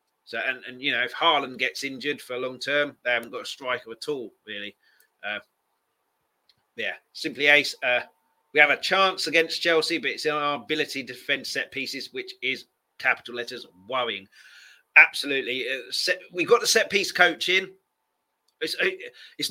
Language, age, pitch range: English, 30-49, 125-180 Hz